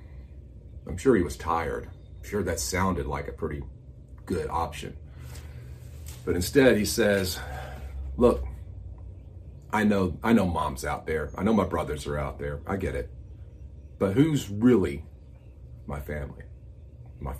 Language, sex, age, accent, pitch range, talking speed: English, male, 40-59, American, 75-115 Hz, 145 wpm